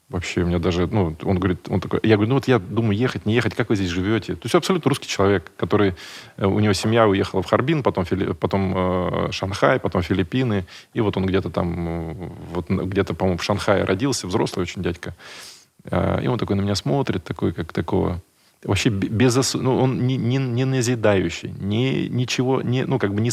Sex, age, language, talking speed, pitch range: male, 20-39, Russian, 205 wpm, 90-125 Hz